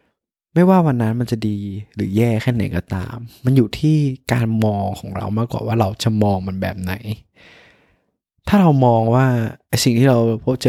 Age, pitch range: 20-39, 105-120 Hz